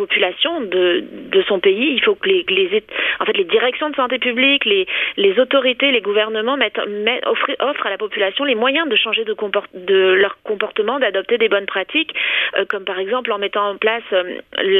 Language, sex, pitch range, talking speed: French, female, 200-300 Hz, 205 wpm